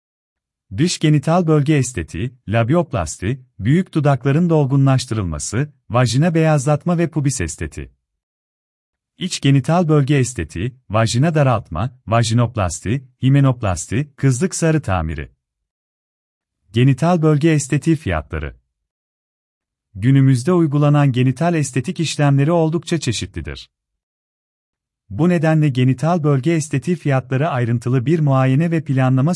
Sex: male